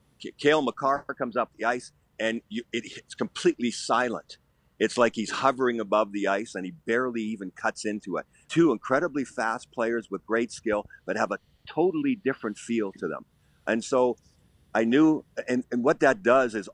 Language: English